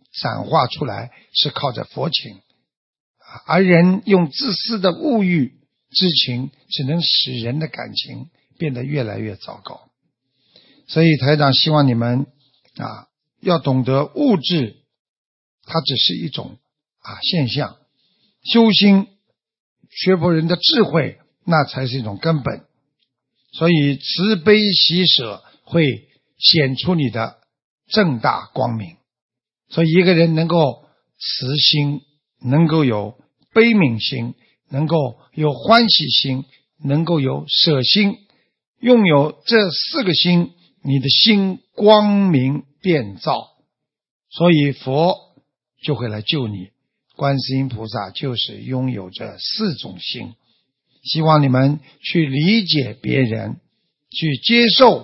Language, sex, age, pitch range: Chinese, male, 50-69, 130-175 Hz